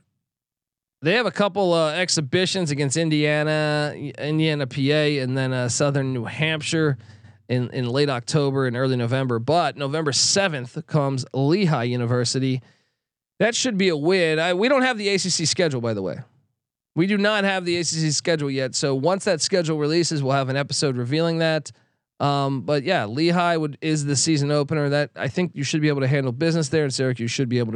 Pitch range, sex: 130-170 Hz, male